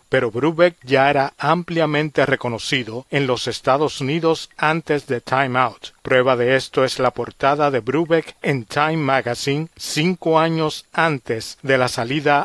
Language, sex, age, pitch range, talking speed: Spanish, male, 40-59, 130-155 Hz, 150 wpm